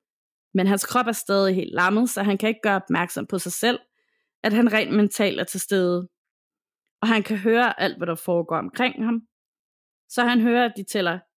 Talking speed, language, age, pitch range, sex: 205 wpm, Danish, 20-39, 190-240 Hz, female